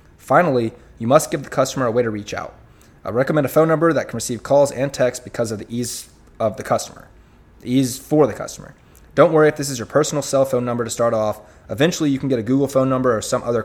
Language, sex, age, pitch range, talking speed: English, male, 20-39, 110-135 Hz, 250 wpm